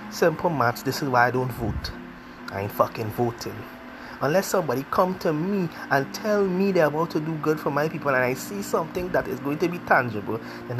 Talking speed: 215 wpm